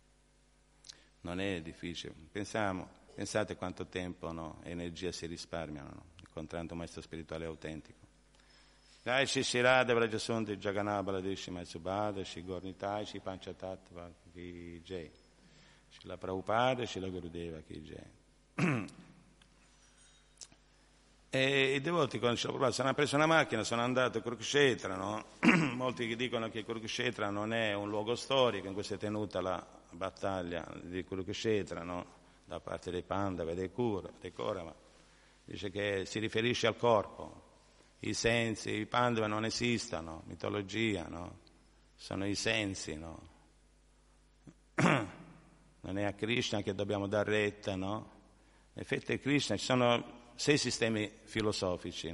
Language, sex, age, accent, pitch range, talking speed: Italian, male, 50-69, native, 90-115 Hz, 135 wpm